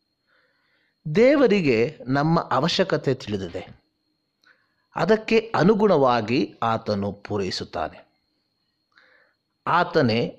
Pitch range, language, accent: 125-205 Hz, Kannada, native